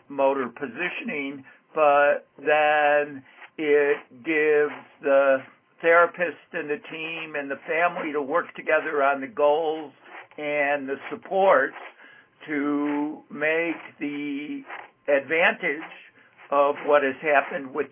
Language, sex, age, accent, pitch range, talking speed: English, male, 60-79, American, 145-175 Hz, 105 wpm